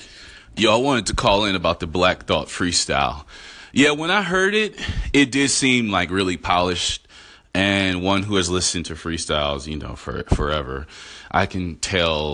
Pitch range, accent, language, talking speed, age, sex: 80-115 Hz, American, English, 175 wpm, 30-49, male